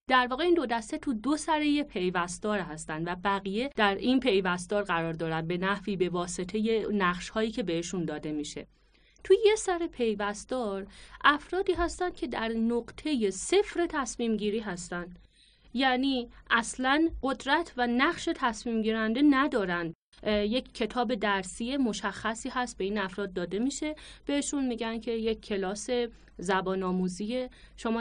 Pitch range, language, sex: 195-260 Hz, Persian, female